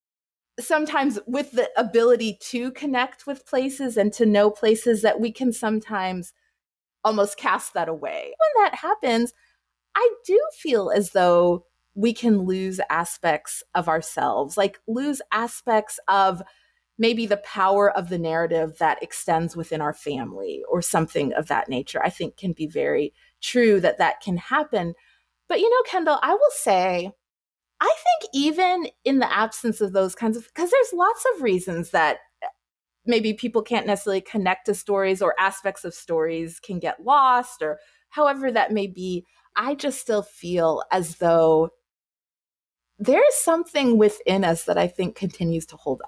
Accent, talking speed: American, 160 wpm